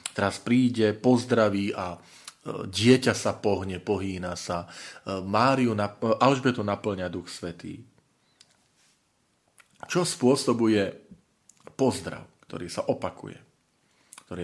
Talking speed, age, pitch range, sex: 85 wpm, 40-59, 95-120 Hz, male